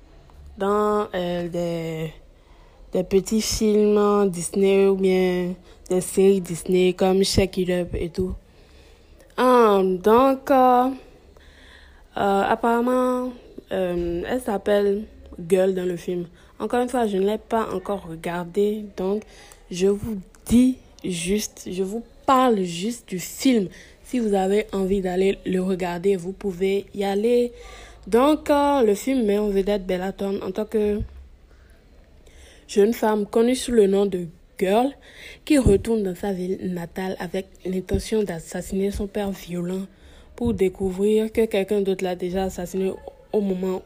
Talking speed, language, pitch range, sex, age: 140 wpm, French, 180-220 Hz, female, 20-39